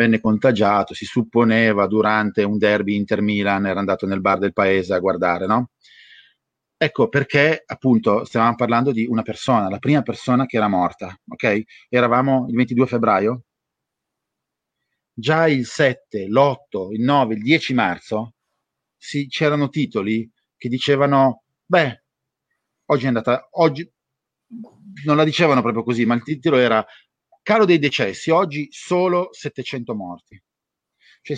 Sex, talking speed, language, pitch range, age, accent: male, 140 wpm, Italian, 105-145 Hz, 30-49, native